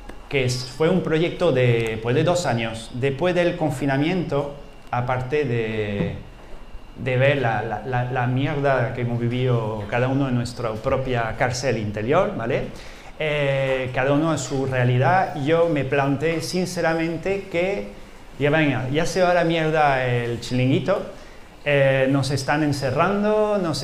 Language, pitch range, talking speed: Spanish, 130-165 Hz, 140 wpm